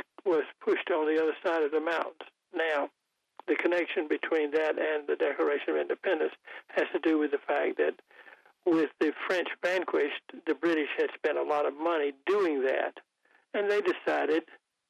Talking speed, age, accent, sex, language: 170 wpm, 60-79, American, male, English